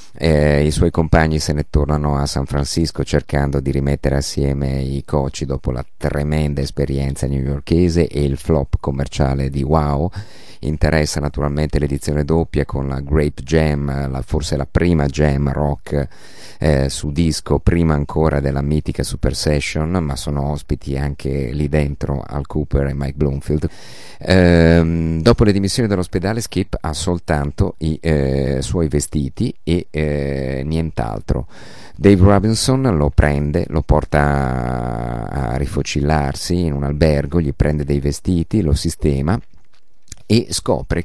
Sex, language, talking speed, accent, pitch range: male, Italian, 135 wpm, native, 70-85 Hz